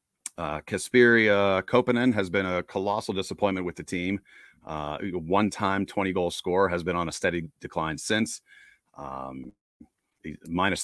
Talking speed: 135 wpm